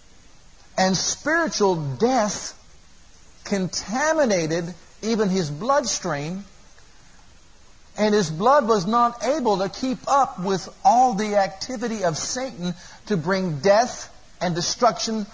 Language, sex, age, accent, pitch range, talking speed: English, male, 50-69, American, 180-235 Hz, 105 wpm